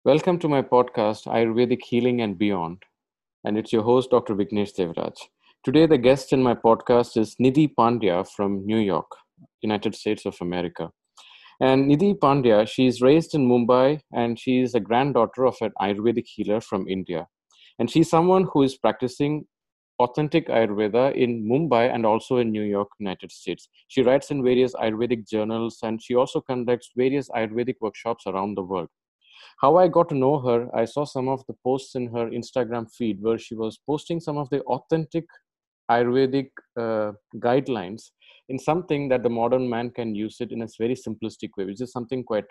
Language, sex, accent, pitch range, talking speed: English, male, Indian, 110-130 Hz, 180 wpm